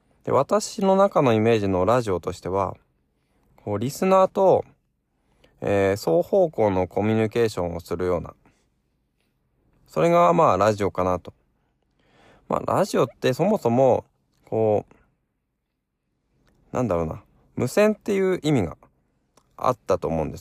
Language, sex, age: Japanese, male, 20-39